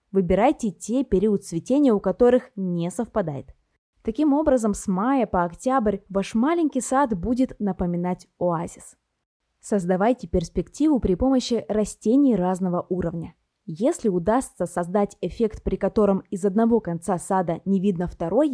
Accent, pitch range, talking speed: native, 180-240 Hz, 130 wpm